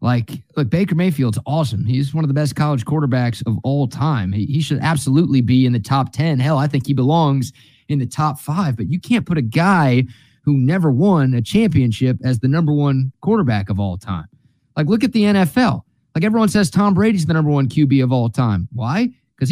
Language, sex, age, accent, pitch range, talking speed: English, male, 30-49, American, 130-200 Hz, 220 wpm